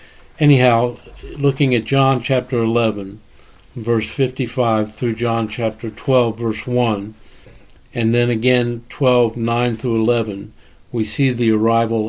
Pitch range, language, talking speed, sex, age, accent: 110-130 Hz, English, 125 wpm, male, 60-79, American